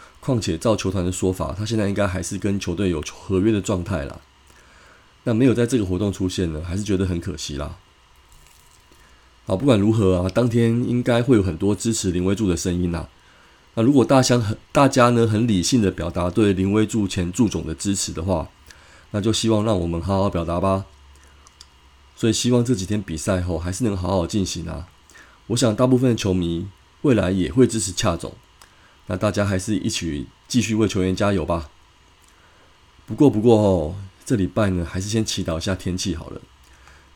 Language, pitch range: Chinese, 85-110 Hz